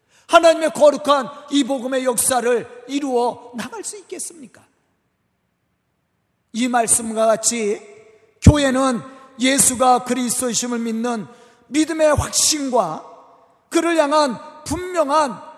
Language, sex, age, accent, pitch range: Korean, male, 40-59, native, 205-285 Hz